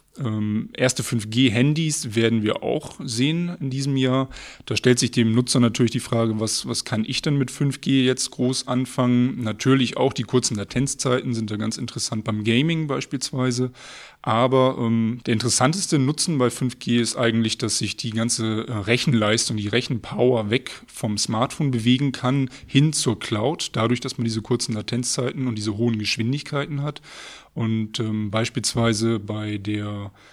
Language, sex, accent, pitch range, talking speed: German, male, German, 115-130 Hz, 160 wpm